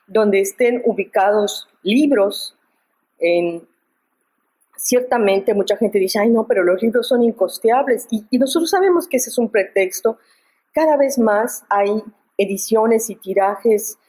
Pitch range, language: 195-245 Hz, Spanish